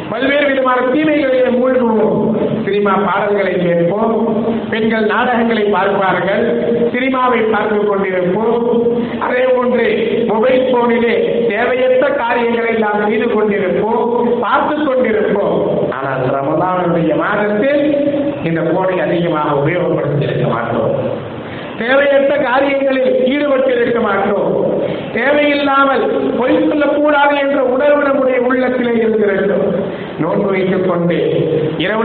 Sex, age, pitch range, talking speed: male, 50-69, 185-255 Hz, 90 wpm